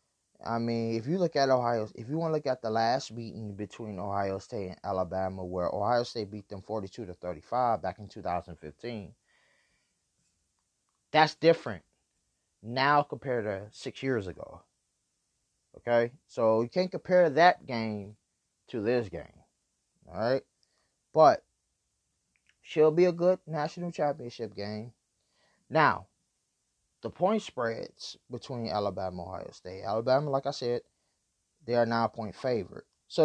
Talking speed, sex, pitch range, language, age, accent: 145 wpm, male, 100-130 Hz, English, 20-39, American